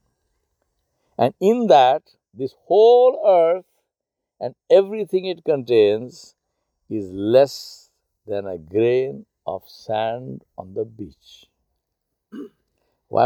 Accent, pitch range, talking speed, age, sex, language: Indian, 120-155 Hz, 95 wpm, 60-79, male, English